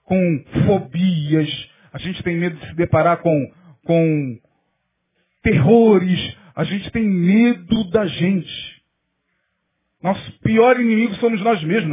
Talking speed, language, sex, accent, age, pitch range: 120 wpm, English, male, Brazilian, 40-59, 175-255 Hz